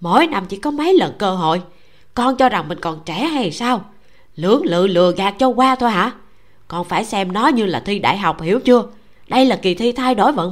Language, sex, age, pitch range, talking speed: Vietnamese, female, 20-39, 190-260 Hz, 240 wpm